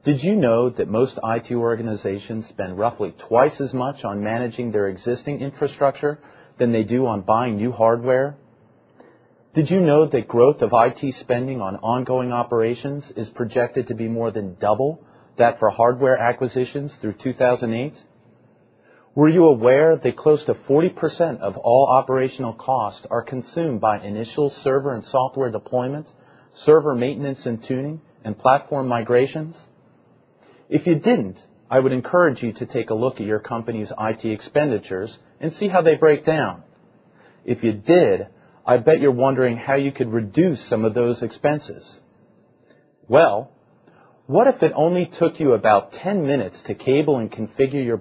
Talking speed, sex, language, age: 155 wpm, male, English, 30-49